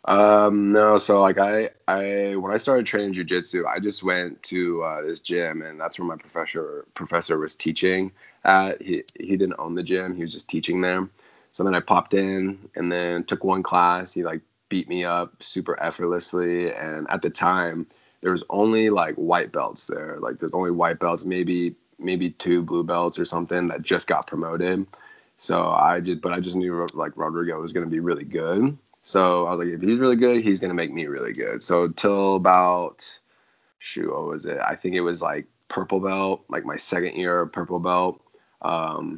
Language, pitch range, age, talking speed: English, 85-95 Hz, 20-39, 205 wpm